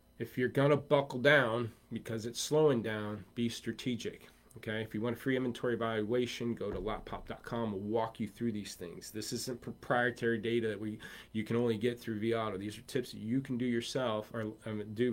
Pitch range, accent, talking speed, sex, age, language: 105-120 Hz, American, 215 wpm, male, 30-49, English